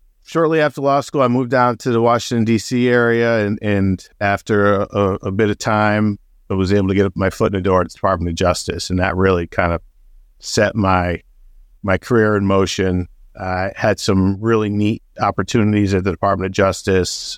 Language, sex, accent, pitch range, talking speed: English, male, American, 90-105 Hz, 205 wpm